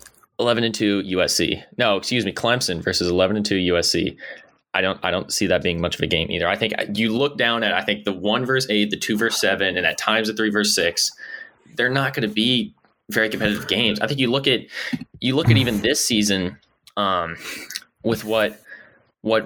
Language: English